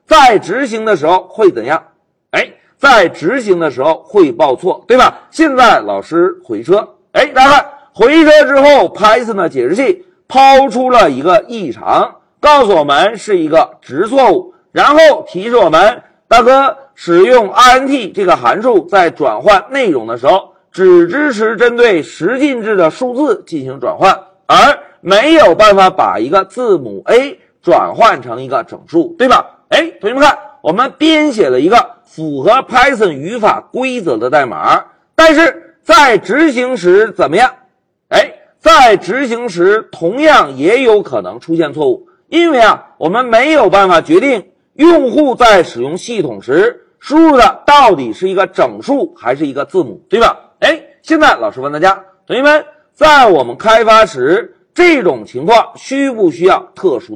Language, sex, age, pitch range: Chinese, male, 50-69, 250-350 Hz